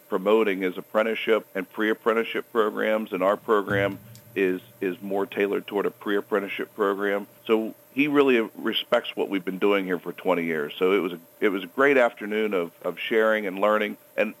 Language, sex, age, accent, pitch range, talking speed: English, male, 50-69, American, 95-110 Hz, 190 wpm